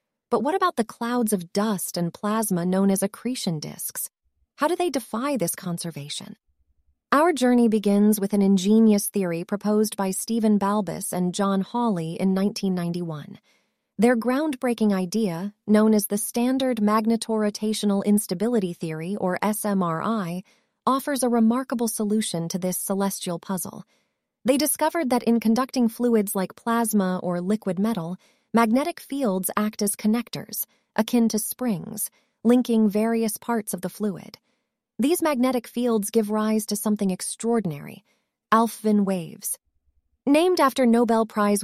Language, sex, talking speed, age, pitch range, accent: English, female, 135 wpm, 30-49, 195-235 Hz, American